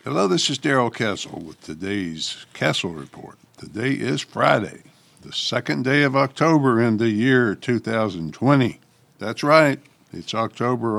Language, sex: English, male